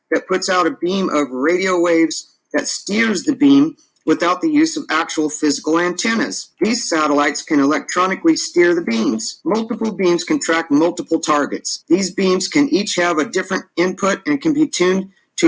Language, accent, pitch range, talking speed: English, American, 155-200 Hz, 175 wpm